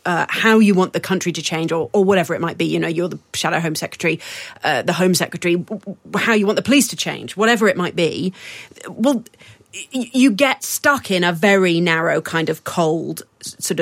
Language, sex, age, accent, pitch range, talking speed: English, female, 30-49, British, 165-215 Hz, 215 wpm